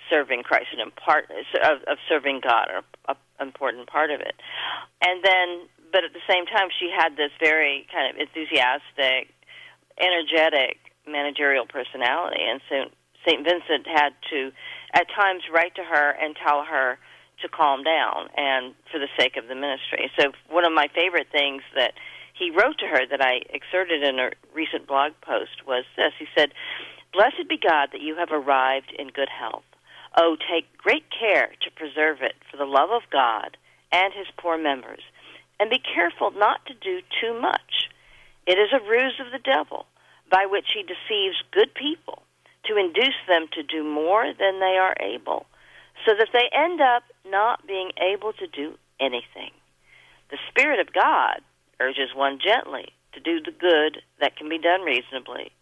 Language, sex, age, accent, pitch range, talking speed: English, female, 40-59, American, 145-205 Hz, 175 wpm